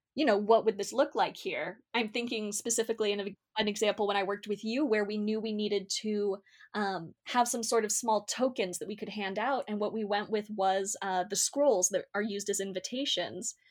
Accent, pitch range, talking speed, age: American, 195-230 Hz, 230 wpm, 20-39